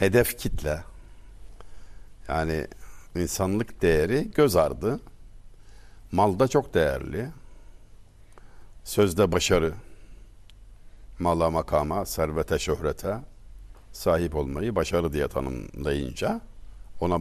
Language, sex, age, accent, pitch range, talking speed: Turkish, male, 60-79, native, 85-105 Hz, 75 wpm